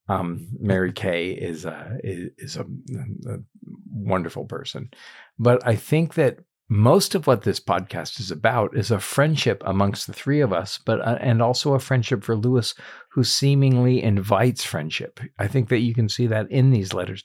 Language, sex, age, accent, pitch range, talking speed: English, male, 50-69, American, 105-130 Hz, 180 wpm